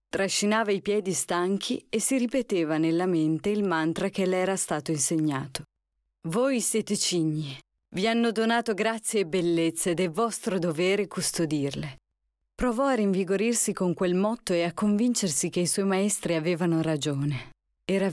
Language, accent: Italian, native